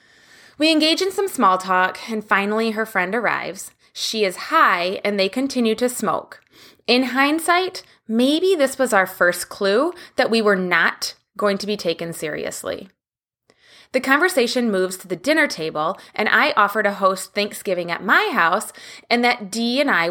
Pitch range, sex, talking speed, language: 190-260 Hz, female, 170 wpm, English